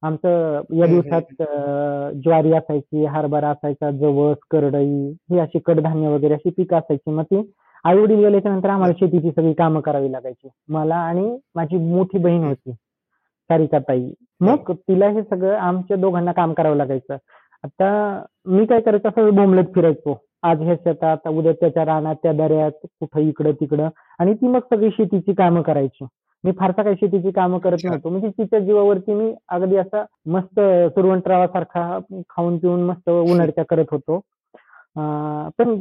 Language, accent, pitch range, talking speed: Marathi, native, 155-190 Hz, 150 wpm